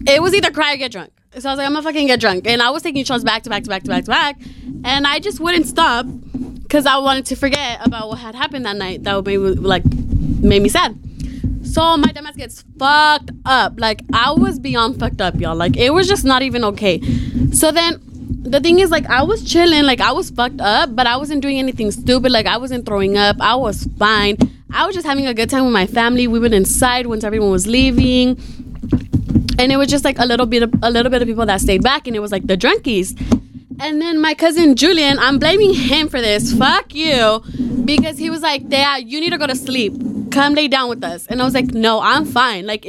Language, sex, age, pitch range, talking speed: English, female, 20-39, 235-290 Hz, 245 wpm